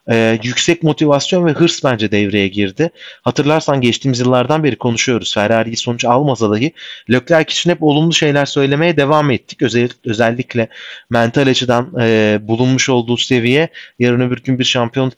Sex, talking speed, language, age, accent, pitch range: male, 140 wpm, Turkish, 30-49, native, 110-130 Hz